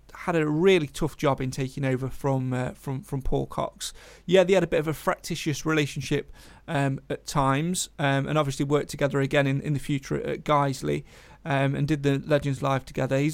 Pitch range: 140-160 Hz